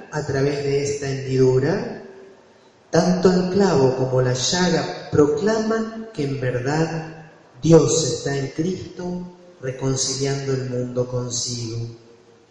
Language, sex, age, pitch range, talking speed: Spanish, male, 30-49, 125-180 Hz, 110 wpm